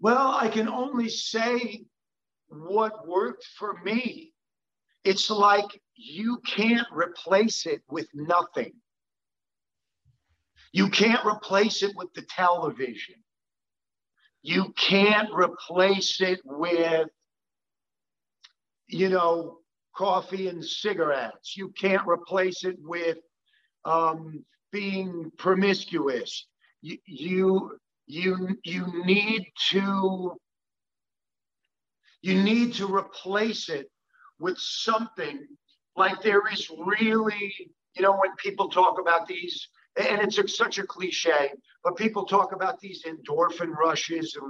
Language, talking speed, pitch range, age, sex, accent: English, 105 wpm, 175-220 Hz, 50-69, male, American